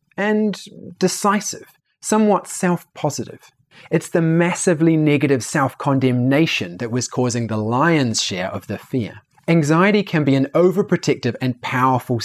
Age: 30-49